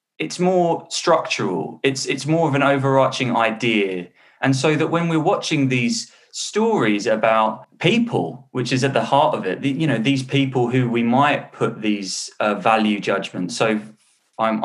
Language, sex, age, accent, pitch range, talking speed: English, male, 20-39, British, 110-140 Hz, 170 wpm